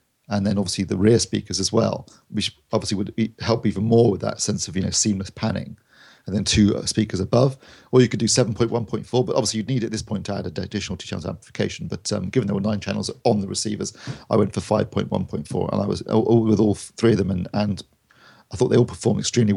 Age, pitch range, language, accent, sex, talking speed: 40-59, 95-115 Hz, English, British, male, 265 wpm